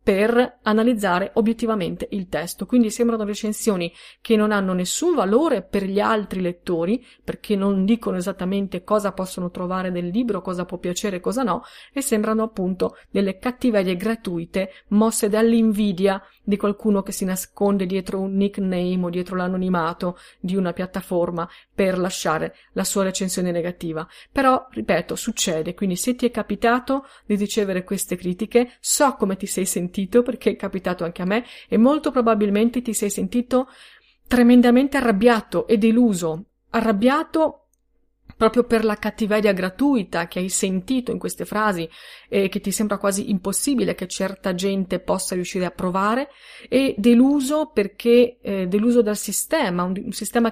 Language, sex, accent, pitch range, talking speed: Italian, female, native, 185-235 Hz, 155 wpm